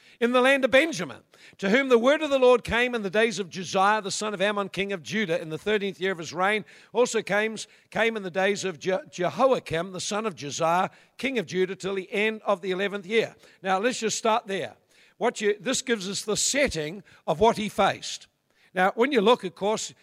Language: English